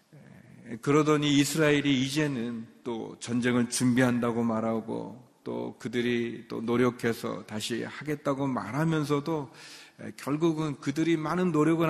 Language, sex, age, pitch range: Korean, male, 40-59, 115-145 Hz